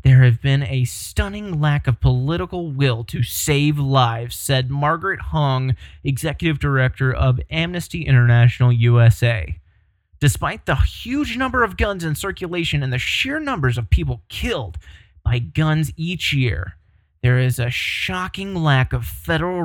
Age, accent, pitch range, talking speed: 30-49, American, 115-150 Hz, 145 wpm